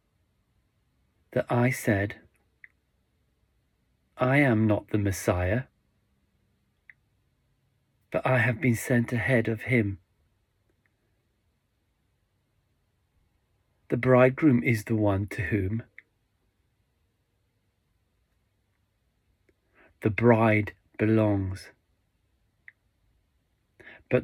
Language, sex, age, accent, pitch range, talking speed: English, male, 40-59, British, 100-120 Hz, 65 wpm